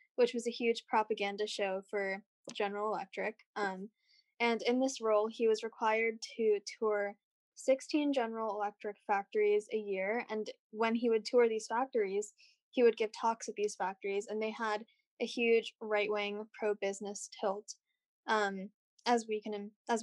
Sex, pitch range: female, 205-235 Hz